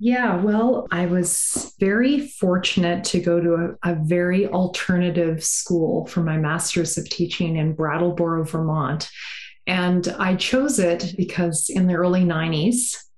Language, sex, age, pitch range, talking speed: English, female, 30-49, 165-190 Hz, 140 wpm